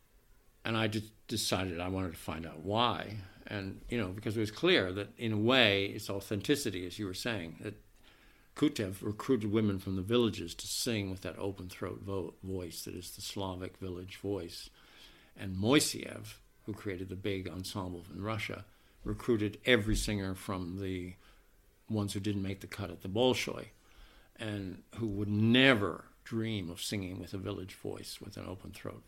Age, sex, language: 60-79, male, English